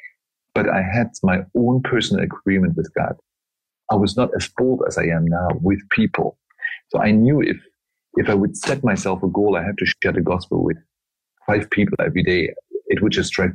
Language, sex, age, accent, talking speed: English, male, 40-59, German, 205 wpm